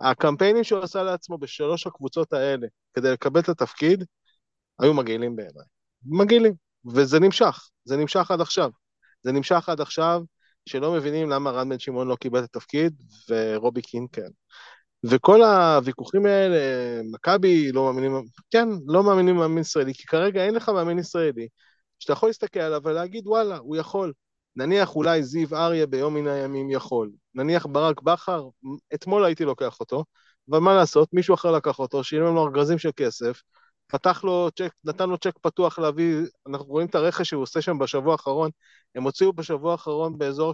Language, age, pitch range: Hebrew, 30-49, 135-170 Hz